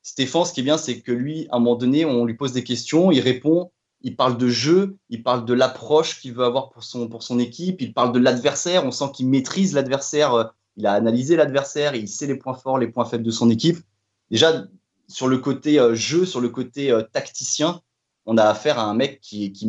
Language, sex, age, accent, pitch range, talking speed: French, male, 20-39, French, 115-140 Hz, 230 wpm